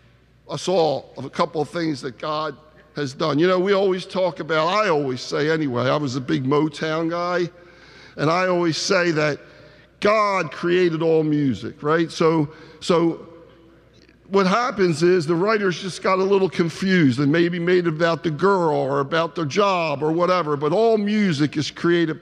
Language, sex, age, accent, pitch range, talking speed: English, male, 50-69, American, 160-195 Hz, 180 wpm